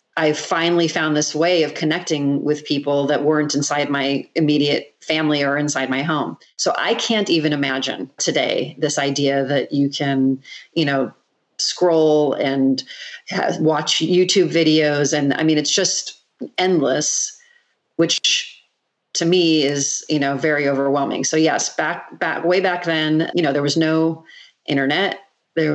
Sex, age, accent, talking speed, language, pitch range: female, 40-59, American, 150 wpm, English, 140-160 Hz